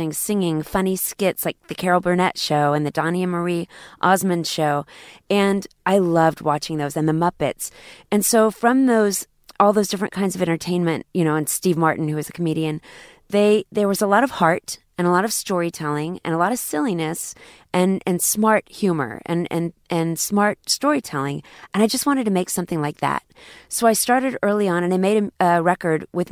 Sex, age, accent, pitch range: female, 30-49, American, 155-195 Hz